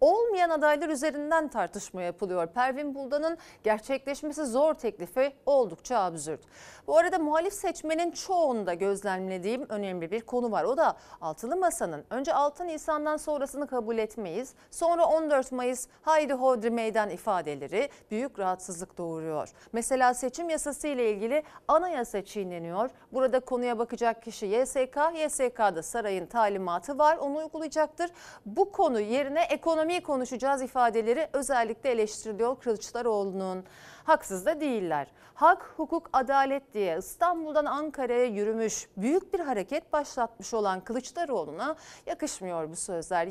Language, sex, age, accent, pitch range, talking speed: Turkish, female, 40-59, native, 215-305 Hz, 125 wpm